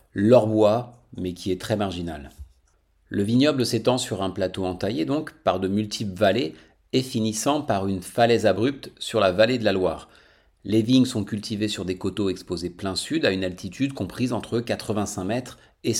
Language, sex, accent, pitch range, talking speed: French, male, French, 95-115 Hz, 185 wpm